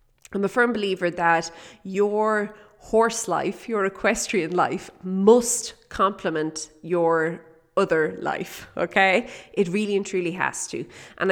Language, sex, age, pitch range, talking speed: English, female, 30-49, 175-230 Hz, 125 wpm